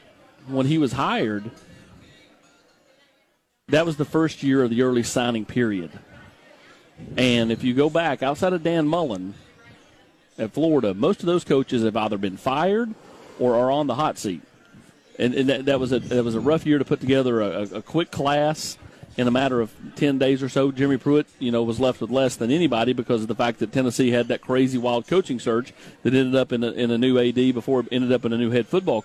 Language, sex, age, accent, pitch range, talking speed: English, male, 40-59, American, 125-160 Hz, 215 wpm